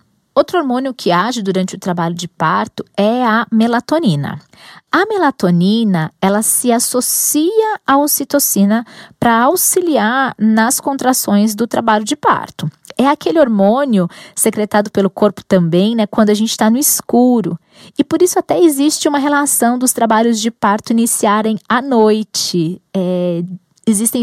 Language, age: Portuguese, 20-39